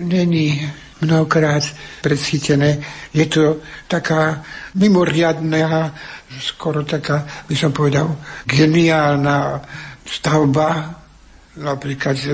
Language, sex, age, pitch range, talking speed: Slovak, male, 60-79, 140-155 Hz, 75 wpm